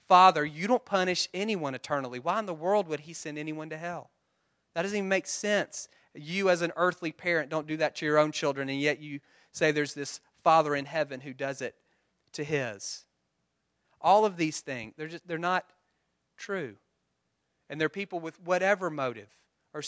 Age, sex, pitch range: 30-49, male, 145-175 Hz